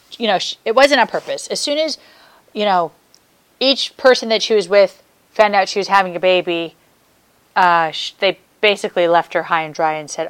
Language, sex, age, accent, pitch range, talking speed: English, female, 30-49, American, 170-215 Hz, 200 wpm